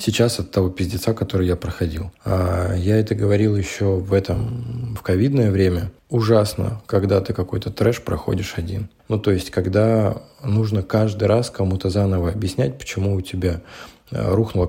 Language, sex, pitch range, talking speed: Russian, male, 95-115 Hz, 150 wpm